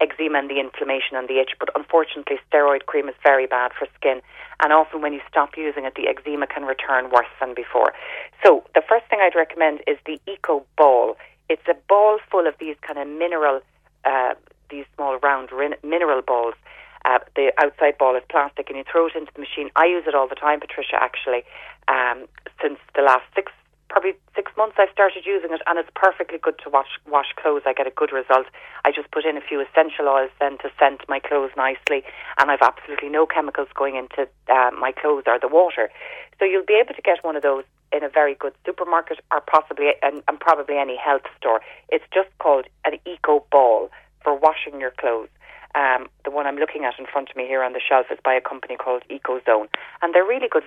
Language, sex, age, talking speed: English, female, 30-49, 220 wpm